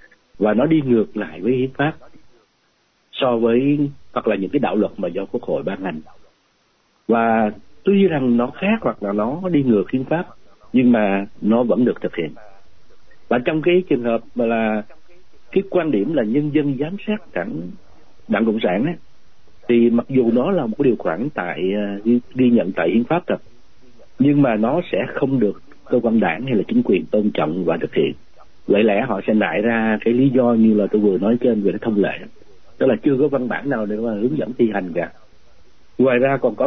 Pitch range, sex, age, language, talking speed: 110-145 Hz, male, 60-79, Vietnamese, 215 wpm